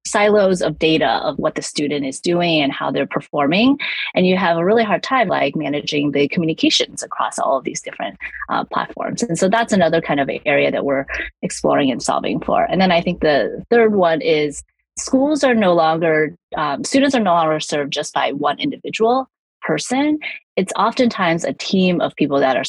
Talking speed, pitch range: 200 wpm, 160-230 Hz